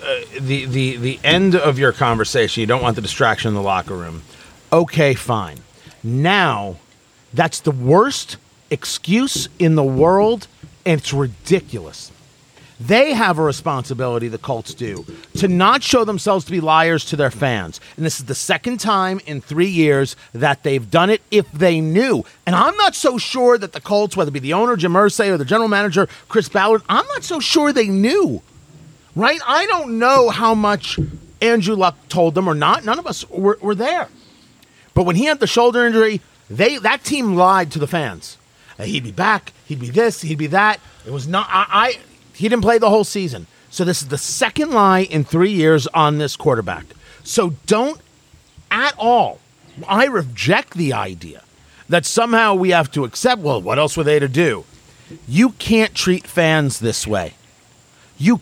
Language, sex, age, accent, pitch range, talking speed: English, male, 40-59, American, 140-215 Hz, 185 wpm